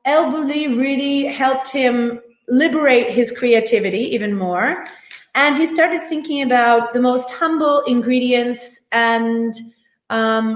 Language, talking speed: Italian, 115 wpm